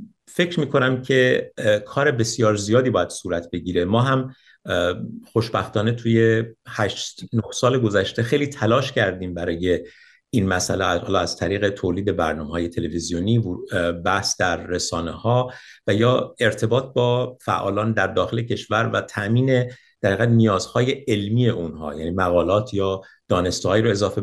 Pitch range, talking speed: 100-125 Hz, 130 wpm